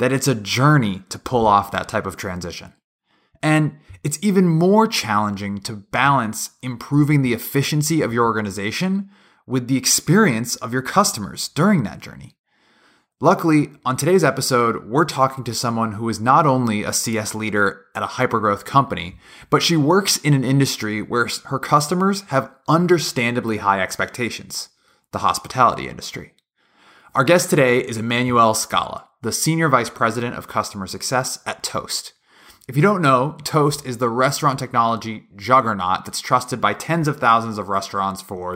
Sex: male